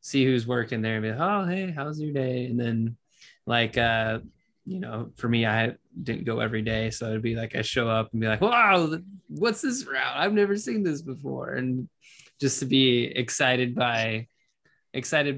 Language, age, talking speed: English, 20-39, 200 wpm